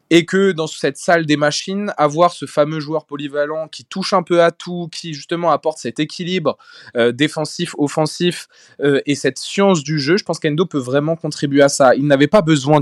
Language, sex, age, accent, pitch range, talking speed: French, male, 20-39, French, 145-185 Hz, 200 wpm